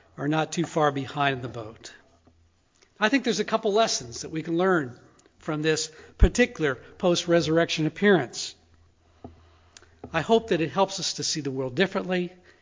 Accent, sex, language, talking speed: American, male, English, 155 wpm